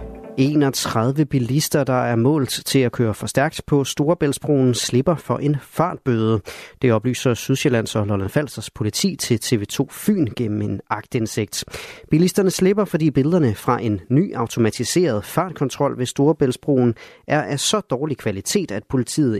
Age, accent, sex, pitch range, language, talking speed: 30-49, native, male, 110-150 Hz, Danish, 145 wpm